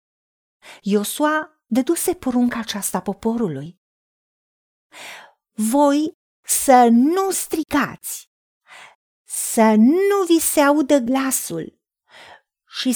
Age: 40-59